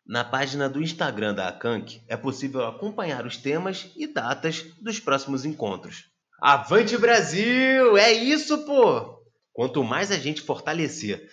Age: 20-39